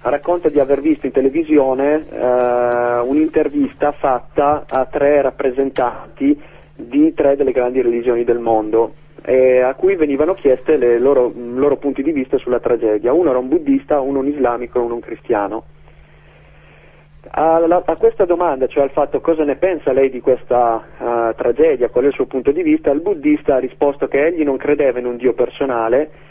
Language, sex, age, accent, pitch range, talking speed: Italian, male, 30-49, native, 125-160 Hz, 170 wpm